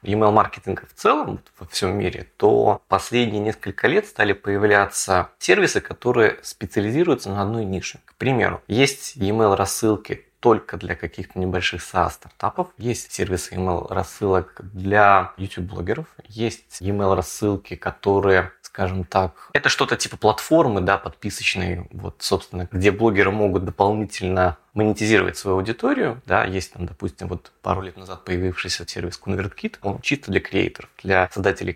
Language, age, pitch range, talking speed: Russian, 20-39, 95-110 Hz, 130 wpm